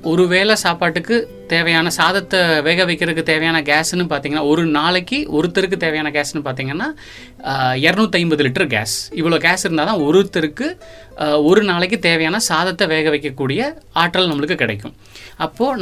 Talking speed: 125 wpm